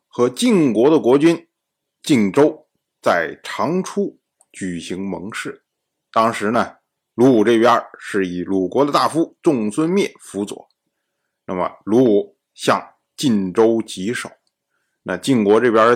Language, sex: Chinese, male